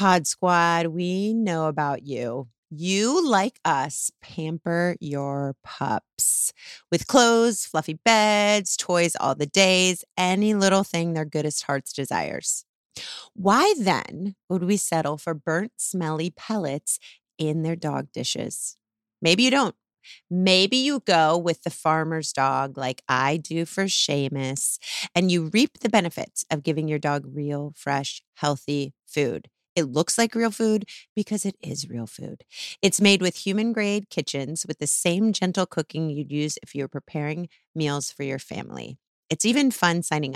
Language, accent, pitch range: English, American, 150-190 Hz